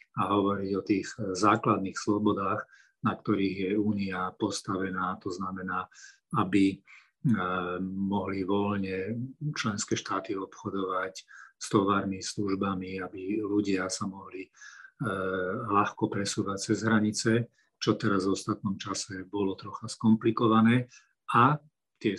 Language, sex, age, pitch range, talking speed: Slovak, male, 40-59, 95-110 Hz, 110 wpm